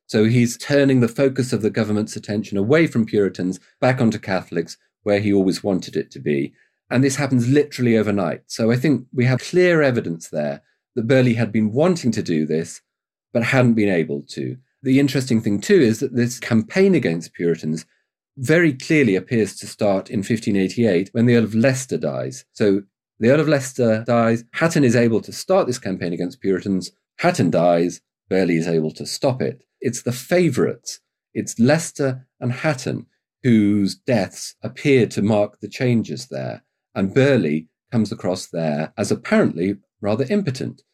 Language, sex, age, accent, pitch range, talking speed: English, male, 40-59, British, 100-130 Hz, 175 wpm